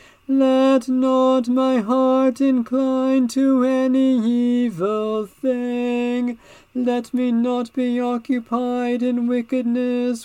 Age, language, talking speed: 40-59, English, 95 wpm